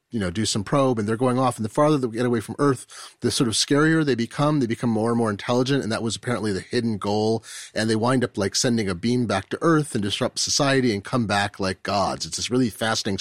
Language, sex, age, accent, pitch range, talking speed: English, male, 30-49, American, 105-145 Hz, 270 wpm